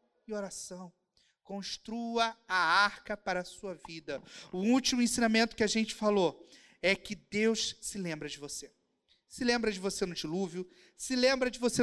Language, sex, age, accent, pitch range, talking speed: Portuguese, male, 40-59, Brazilian, 190-250 Hz, 165 wpm